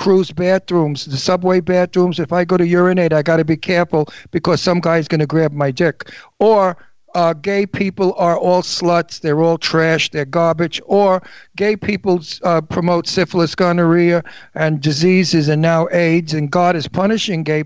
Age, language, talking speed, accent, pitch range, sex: 60-79, English, 175 wpm, American, 165-200 Hz, male